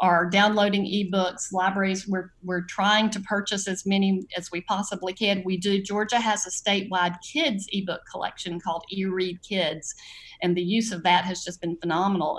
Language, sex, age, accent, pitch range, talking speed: English, female, 50-69, American, 170-195 Hz, 175 wpm